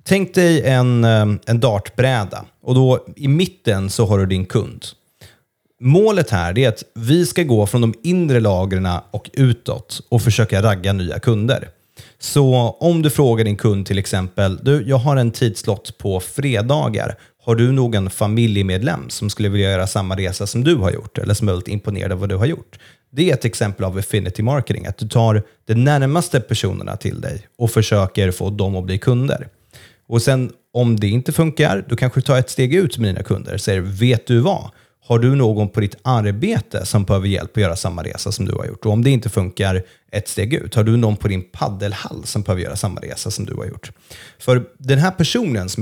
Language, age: Swedish, 30-49